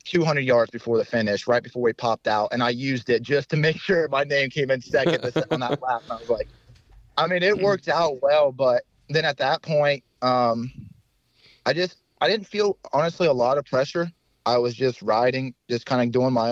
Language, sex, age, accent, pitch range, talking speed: English, male, 30-49, American, 115-130 Hz, 220 wpm